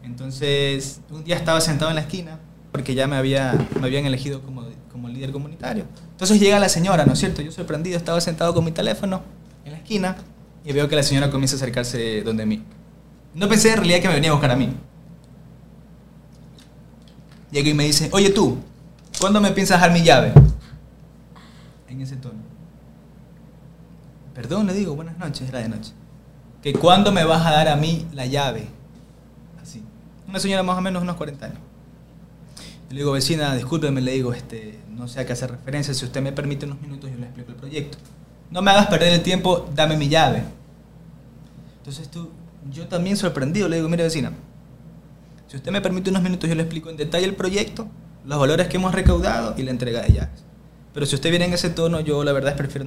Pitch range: 135-175 Hz